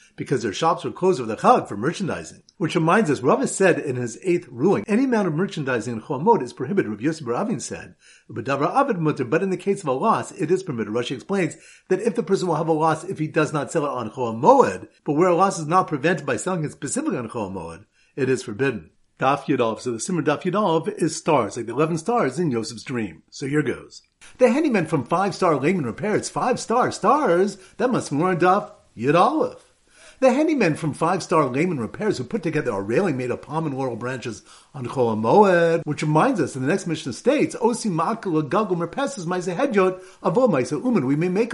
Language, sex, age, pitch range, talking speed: English, male, 50-69, 135-190 Hz, 210 wpm